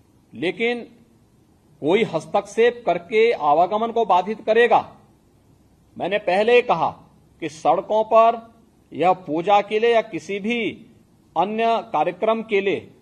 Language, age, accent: Hindi, 50-69, native